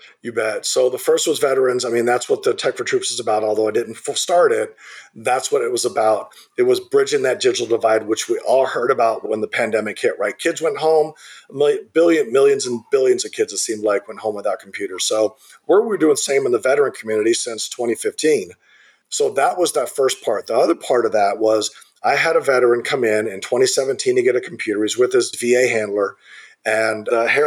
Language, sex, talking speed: English, male, 230 wpm